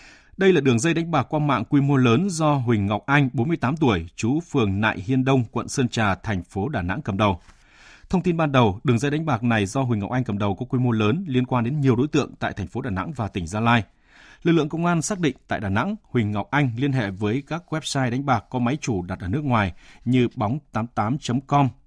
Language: Vietnamese